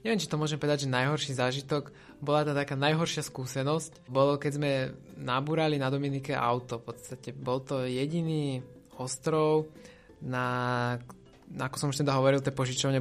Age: 20-39